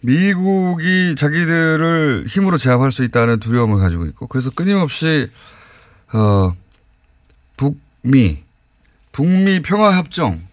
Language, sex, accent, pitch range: Korean, male, native, 115-175 Hz